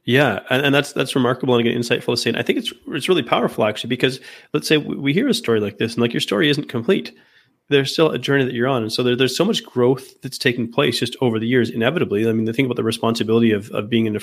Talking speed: 290 wpm